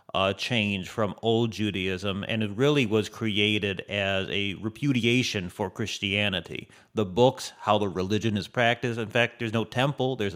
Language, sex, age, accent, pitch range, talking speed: English, male, 30-49, American, 100-120 Hz, 160 wpm